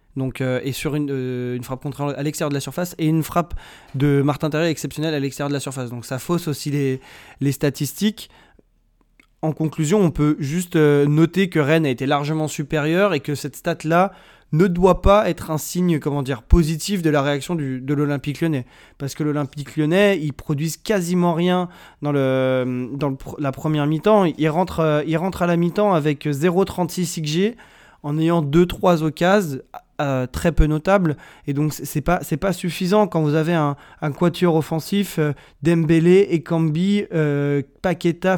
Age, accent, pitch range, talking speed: 20-39, French, 145-175 Hz, 190 wpm